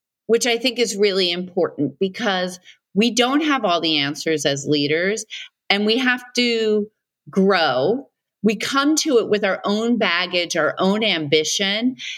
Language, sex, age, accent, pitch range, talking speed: English, female, 40-59, American, 170-220 Hz, 155 wpm